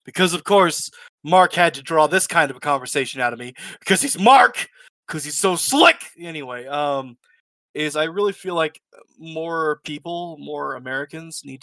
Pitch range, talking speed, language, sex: 130-170 Hz, 175 wpm, English, male